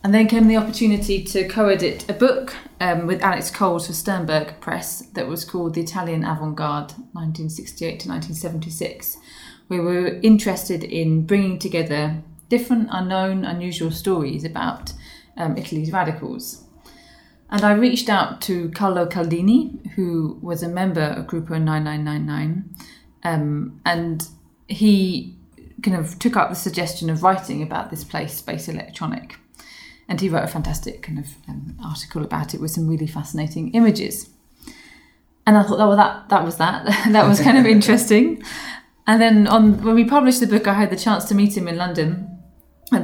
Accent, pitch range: British, 165-210 Hz